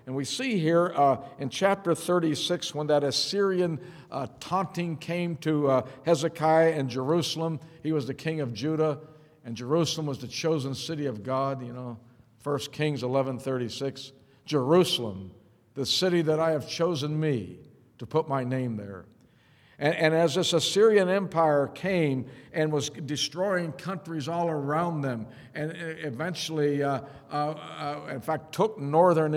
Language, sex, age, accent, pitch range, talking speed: English, male, 50-69, American, 135-165 Hz, 150 wpm